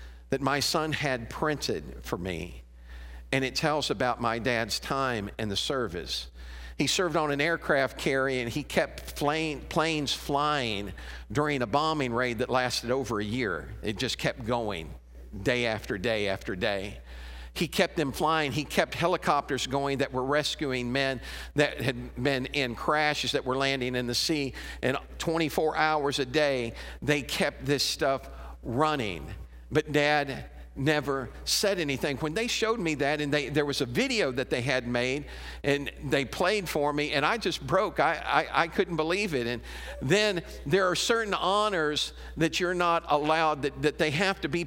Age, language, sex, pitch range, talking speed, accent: 50-69, English, male, 125-155 Hz, 175 wpm, American